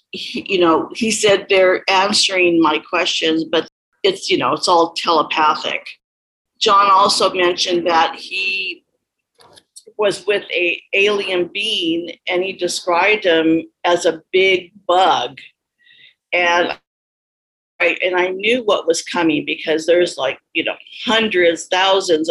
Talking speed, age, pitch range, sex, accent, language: 125 wpm, 50-69, 165-195 Hz, female, American, English